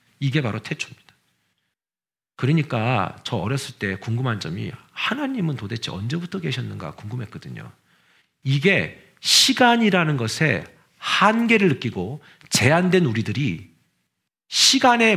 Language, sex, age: Korean, male, 40-59